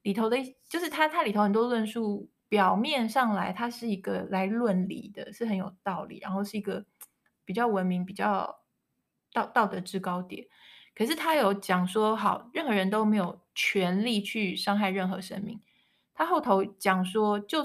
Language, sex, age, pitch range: Chinese, female, 20-39, 190-225 Hz